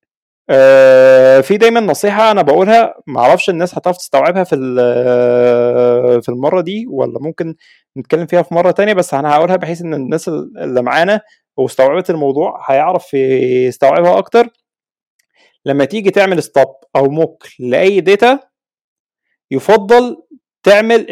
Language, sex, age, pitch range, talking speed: Arabic, male, 20-39, 140-210 Hz, 130 wpm